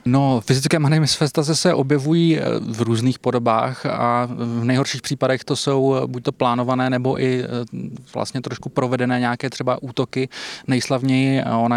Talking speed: 140 wpm